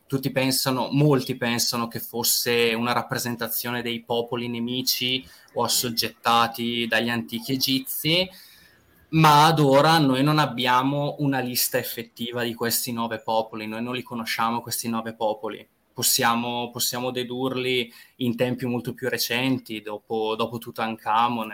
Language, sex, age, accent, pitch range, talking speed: Italian, male, 20-39, native, 115-130 Hz, 130 wpm